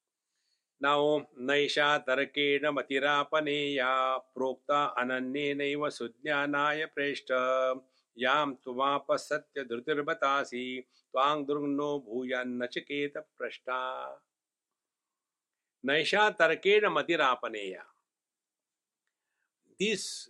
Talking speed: 60 wpm